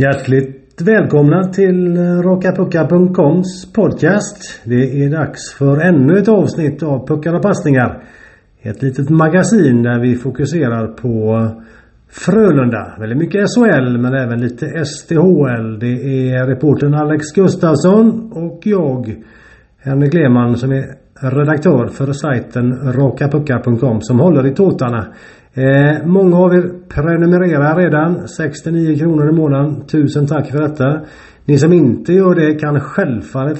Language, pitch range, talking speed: Swedish, 135-175 Hz, 125 wpm